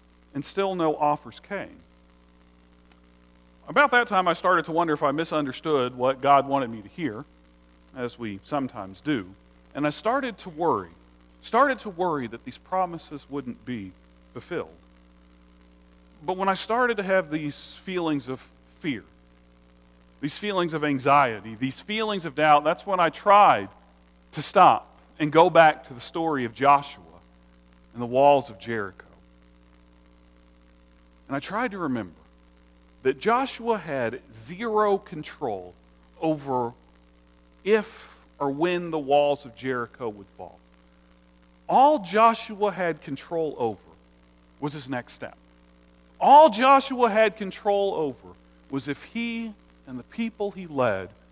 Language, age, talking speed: English, 40-59, 140 wpm